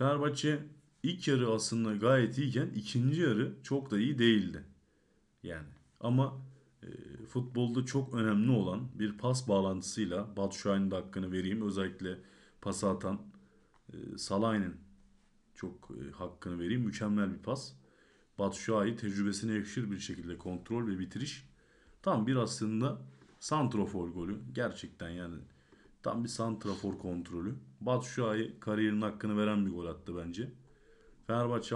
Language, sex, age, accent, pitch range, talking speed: Turkish, male, 40-59, native, 95-120 Hz, 125 wpm